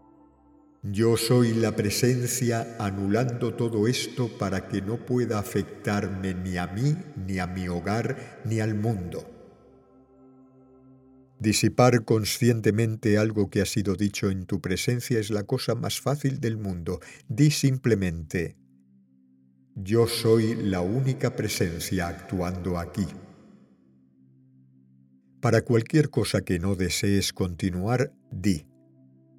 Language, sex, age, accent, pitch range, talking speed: Spanish, male, 50-69, Spanish, 90-115 Hz, 115 wpm